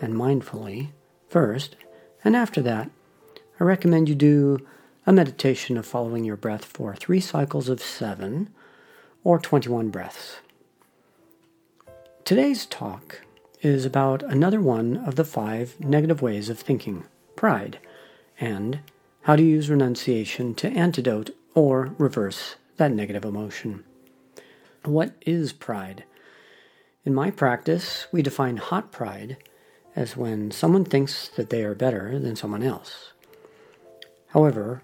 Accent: American